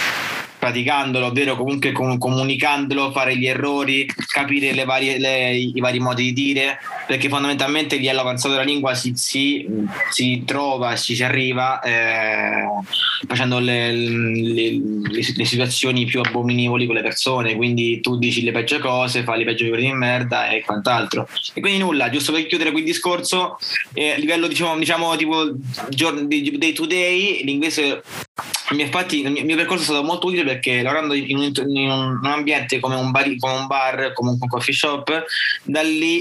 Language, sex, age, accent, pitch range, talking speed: Italian, male, 20-39, native, 125-140 Hz, 160 wpm